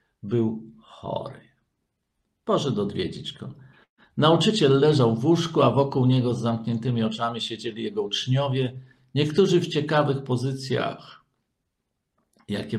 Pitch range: 110-140 Hz